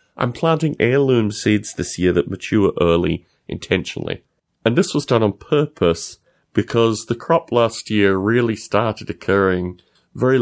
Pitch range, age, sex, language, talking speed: 85-110 Hz, 30-49, male, English, 145 wpm